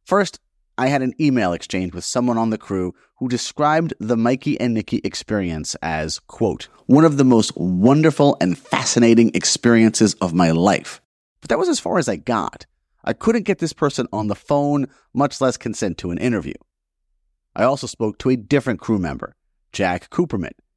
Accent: American